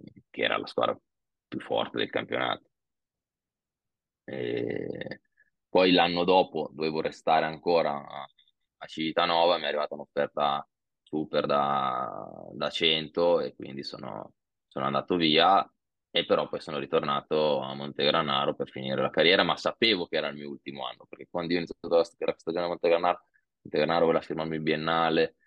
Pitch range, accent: 75-90 Hz, native